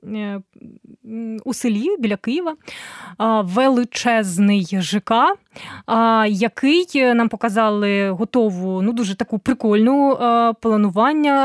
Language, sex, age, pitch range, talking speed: English, female, 20-39, 225-285 Hz, 80 wpm